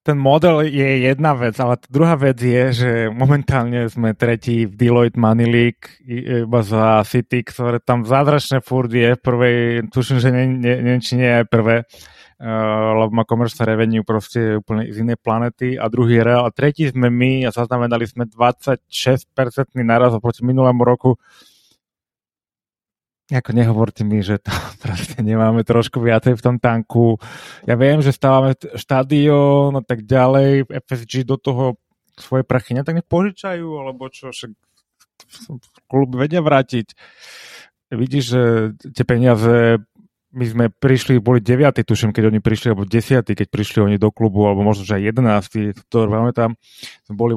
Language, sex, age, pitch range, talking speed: Slovak, male, 20-39, 115-130 Hz, 150 wpm